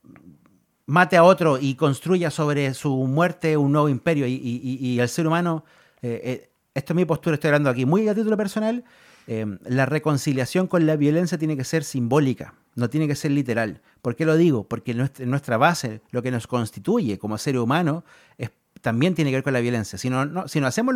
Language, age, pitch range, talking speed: Spanish, 40-59, 125-170 Hz, 210 wpm